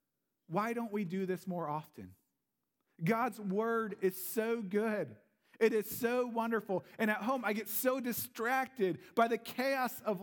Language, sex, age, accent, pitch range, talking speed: English, male, 40-59, American, 145-205 Hz, 160 wpm